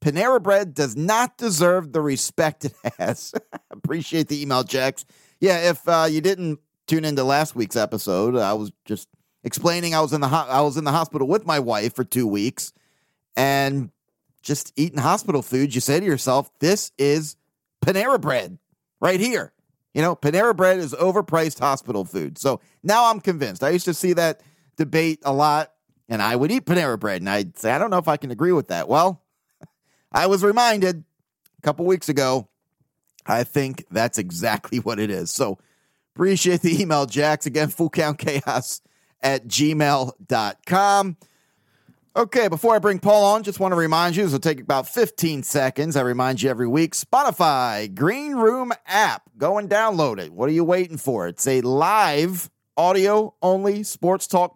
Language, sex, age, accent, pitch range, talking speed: English, male, 30-49, American, 140-185 Hz, 175 wpm